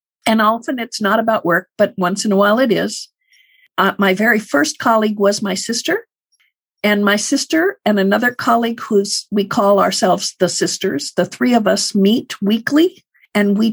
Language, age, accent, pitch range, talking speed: English, 50-69, American, 200-250 Hz, 180 wpm